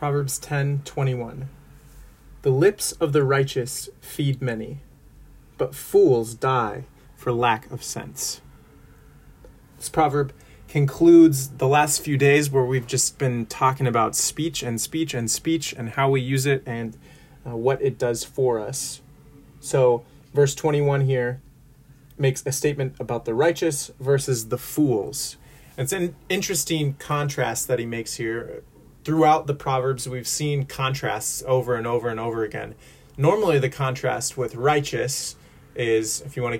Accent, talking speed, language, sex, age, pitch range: American, 145 wpm, English, male, 30-49, 125-145 Hz